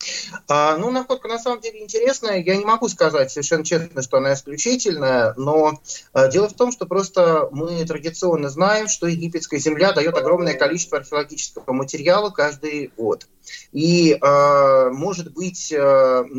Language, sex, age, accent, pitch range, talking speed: Russian, male, 30-49, native, 140-185 Hz, 135 wpm